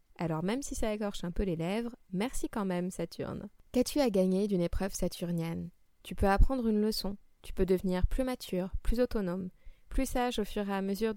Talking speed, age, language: 205 wpm, 20-39, French